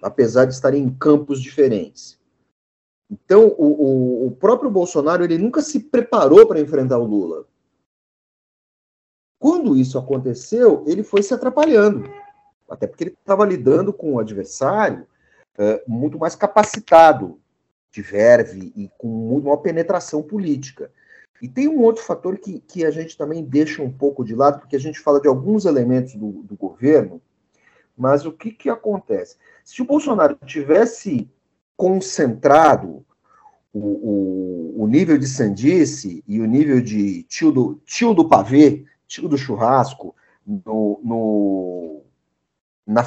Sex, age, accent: male, 50-69, Brazilian